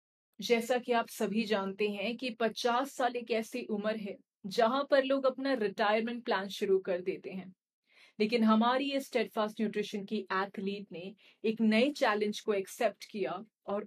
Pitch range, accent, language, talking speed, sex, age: 205-255 Hz, native, Hindi, 165 wpm, female, 40-59